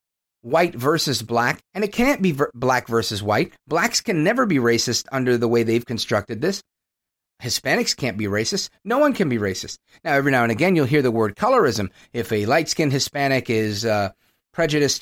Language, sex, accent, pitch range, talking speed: English, male, American, 120-200 Hz, 190 wpm